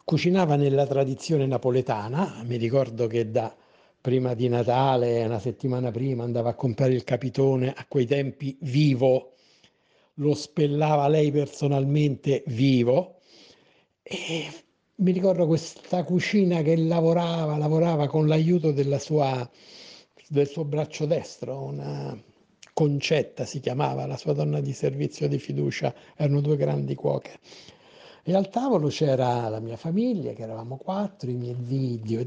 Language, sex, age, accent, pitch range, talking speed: Italian, male, 60-79, native, 125-160 Hz, 130 wpm